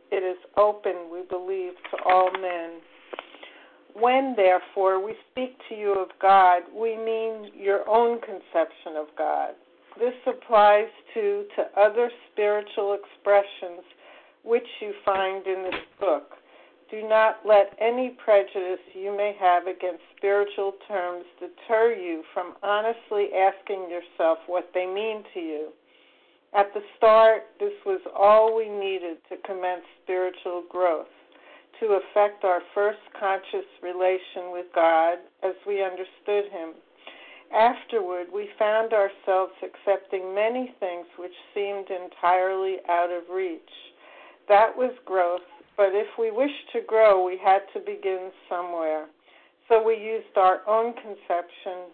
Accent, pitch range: American, 180-220 Hz